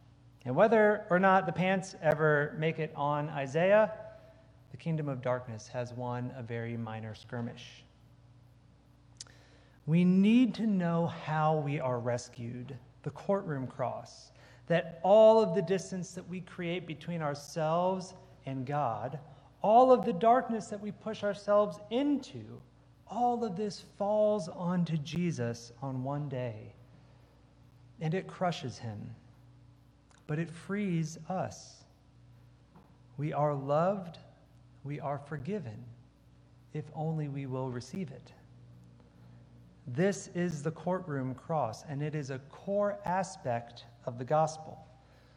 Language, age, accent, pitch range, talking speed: English, 40-59, American, 125-175 Hz, 125 wpm